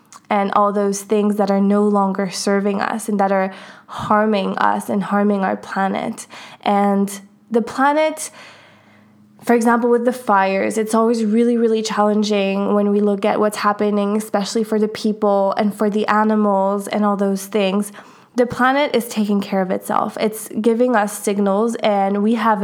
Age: 20-39